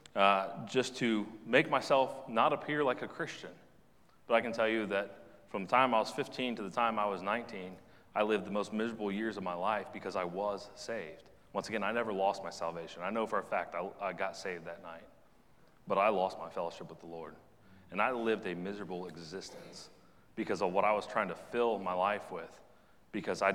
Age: 30-49